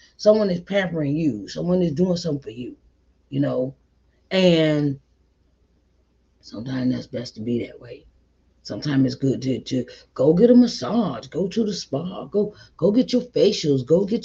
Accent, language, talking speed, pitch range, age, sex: American, English, 170 wpm, 135-220 Hz, 40-59, female